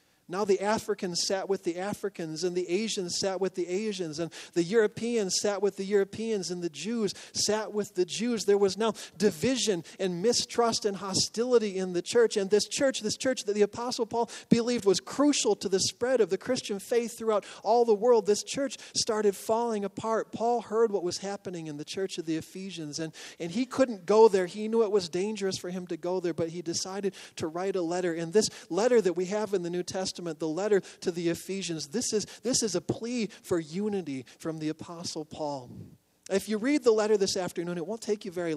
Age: 40-59